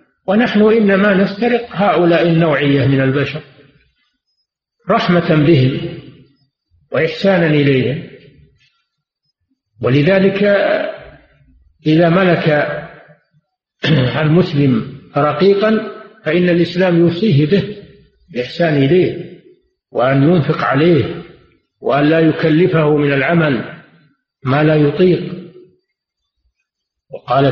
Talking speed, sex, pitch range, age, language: 75 wpm, male, 145-205 Hz, 50-69, Arabic